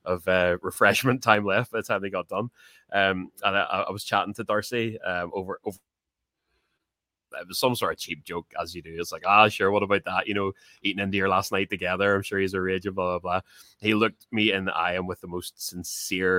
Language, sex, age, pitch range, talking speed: English, male, 20-39, 90-105 Hz, 240 wpm